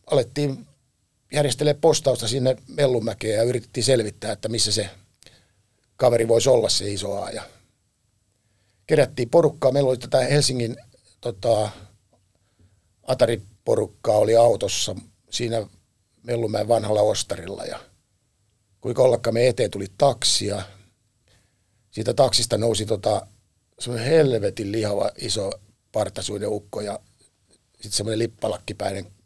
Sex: male